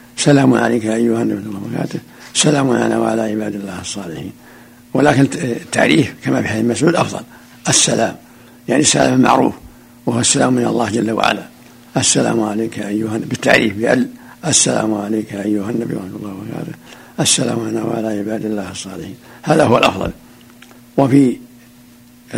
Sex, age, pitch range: male, 60-79, 110-125 Hz